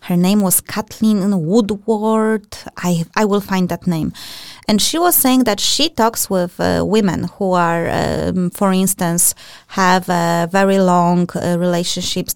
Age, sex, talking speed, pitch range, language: 20-39, female, 155 wpm, 170-205 Hz, English